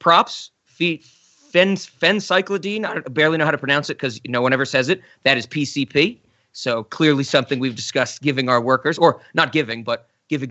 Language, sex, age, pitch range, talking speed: English, male, 30-49, 130-175 Hz, 175 wpm